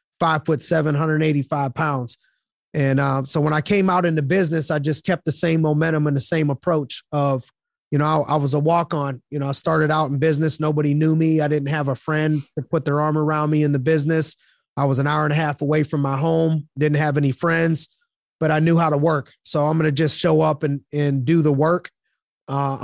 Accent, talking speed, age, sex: American, 240 wpm, 30-49, male